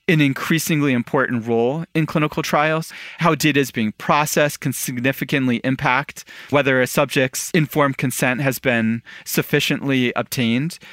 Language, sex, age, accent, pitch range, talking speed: English, male, 40-59, American, 125-150 Hz, 130 wpm